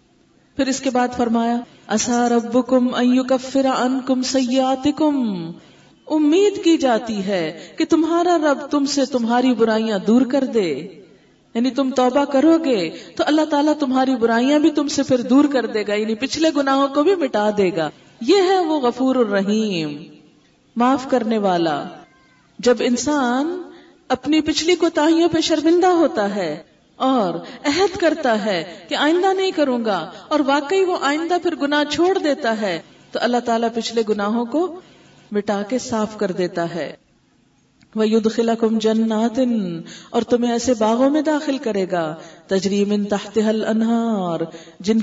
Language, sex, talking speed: Urdu, female, 155 wpm